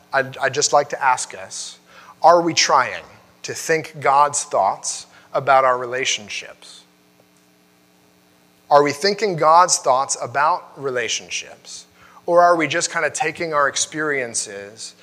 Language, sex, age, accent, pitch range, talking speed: English, male, 30-49, American, 105-150 Hz, 130 wpm